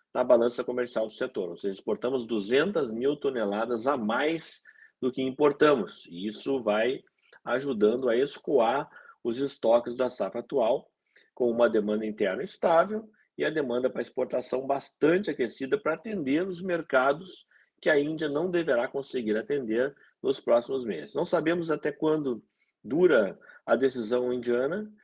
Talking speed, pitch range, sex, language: 145 wpm, 115-145 Hz, male, Portuguese